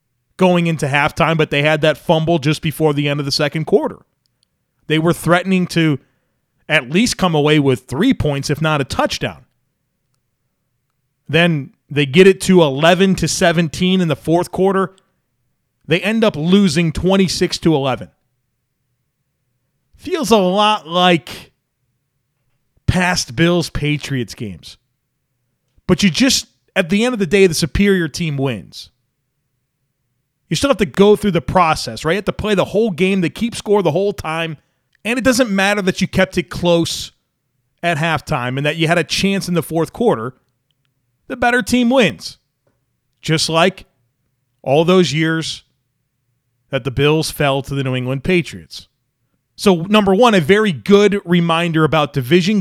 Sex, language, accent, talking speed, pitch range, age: male, English, American, 160 wpm, 135-185 Hz, 30-49